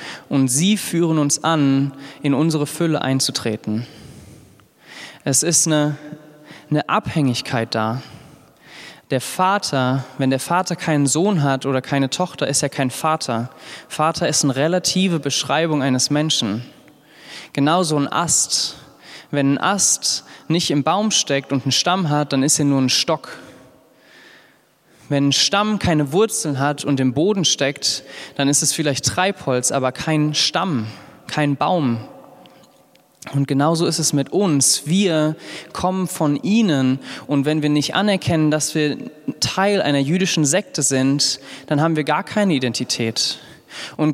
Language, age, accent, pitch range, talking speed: German, 20-39, German, 135-165 Hz, 145 wpm